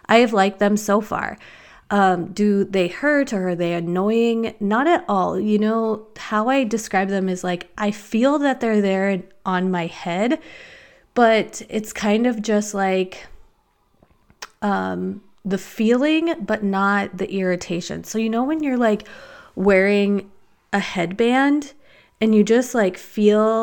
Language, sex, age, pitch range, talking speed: English, female, 20-39, 185-220 Hz, 150 wpm